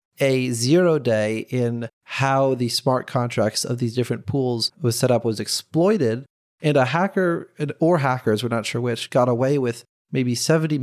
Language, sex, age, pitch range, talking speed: English, male, 30-49, 120-150 Hz, 170 wpm